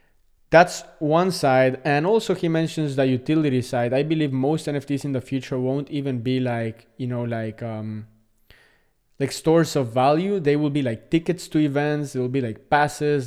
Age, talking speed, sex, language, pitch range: 20-39, 185 wpm, male, English, 120-145 Hz